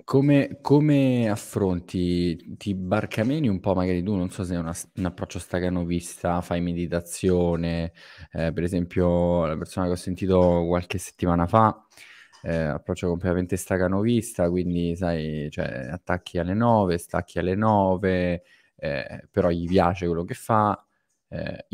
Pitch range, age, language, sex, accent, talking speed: 85-105 Hz, 20-39, Italian, male, native, 140 wpm